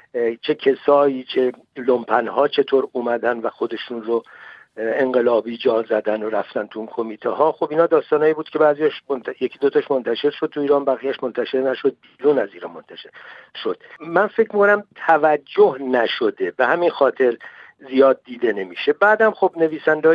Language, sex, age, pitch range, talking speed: Persian, male, 60-79, 125-170 Hz, 150 wpm